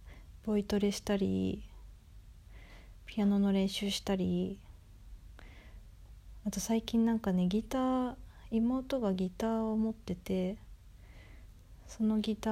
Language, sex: Japanese, female